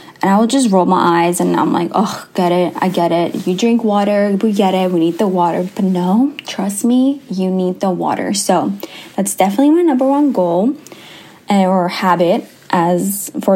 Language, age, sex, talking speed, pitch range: English, 10-29, female, 200 wpm, 185-235 Hz